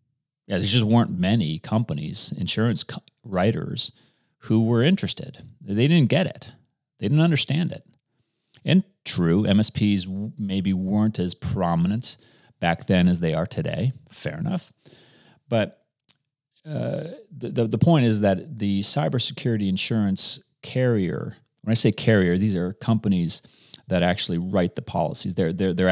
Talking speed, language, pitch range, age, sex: 145 wpm, English, 90-125 Hz, 30-49, male